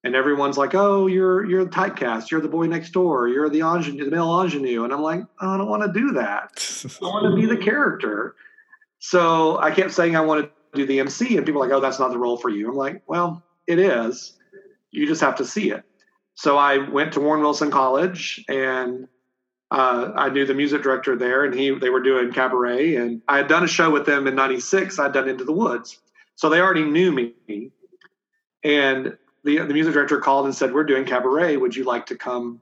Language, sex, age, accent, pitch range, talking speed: English, male, 40-59, American, 130-175 Hz, 225 wpm